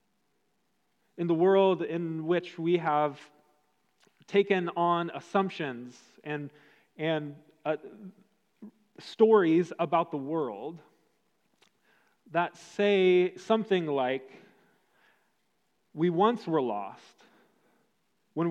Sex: male